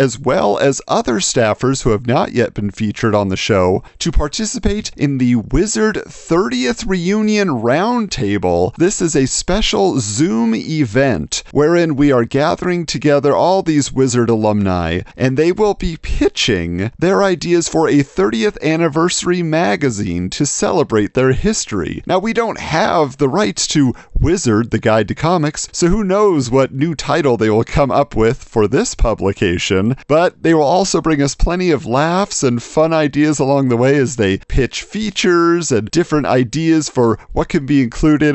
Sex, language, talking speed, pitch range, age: male, English, 165 wpm, 115-170 Hz, 40-59